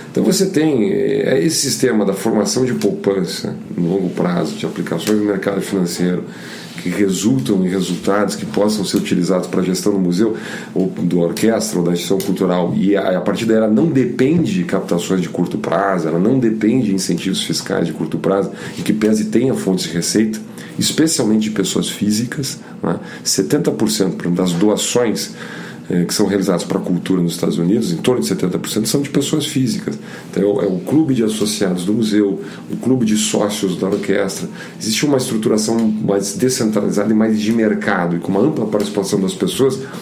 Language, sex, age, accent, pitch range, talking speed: Portuguese, male, 40-59, Brazilian, 95-115 Hz, 180 wpm